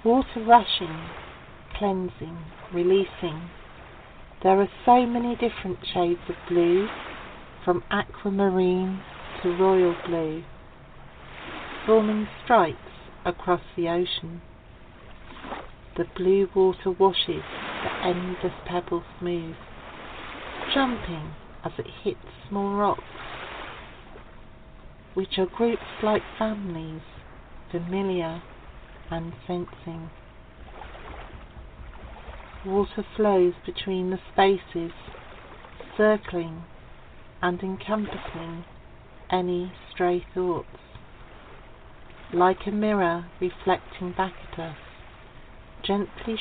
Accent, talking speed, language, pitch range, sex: British, 80 wpm, English, 170-200 Hz, female